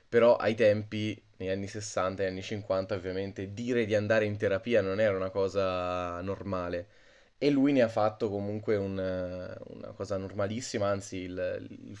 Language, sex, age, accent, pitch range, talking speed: Italian, male, 20-39, native, 95-110 Hz, 165 wpm